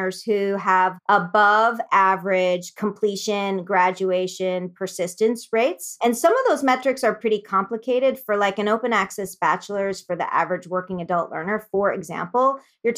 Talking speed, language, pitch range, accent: 145 wpm, English, 185-230 Hz, American